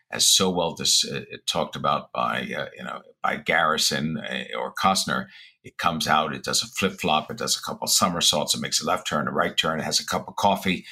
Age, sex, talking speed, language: 60-79, male, 235 wpm, English